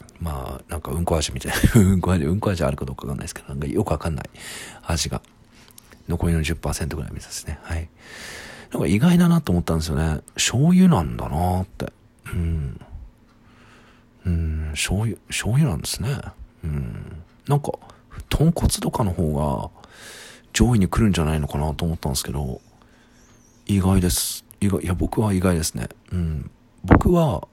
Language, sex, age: Japanese, male, 40-59